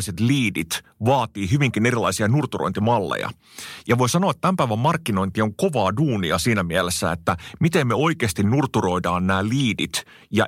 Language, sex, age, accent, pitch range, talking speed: Finnish, male, 30-49, native, 95-130 Hz, 135 wpm